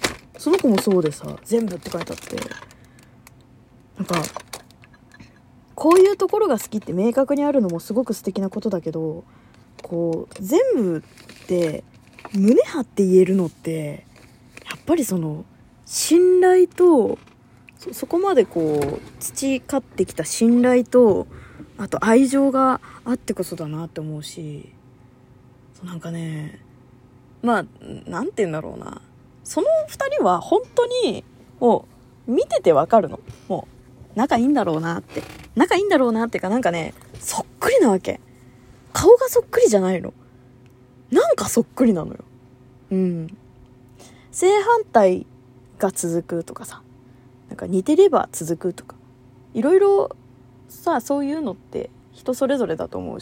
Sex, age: female, 20-39